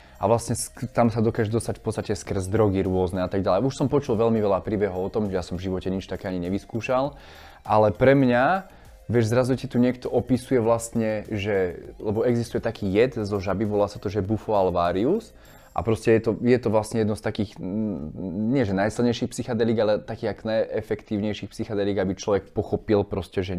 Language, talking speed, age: Slovak, 200 wpm, 20-39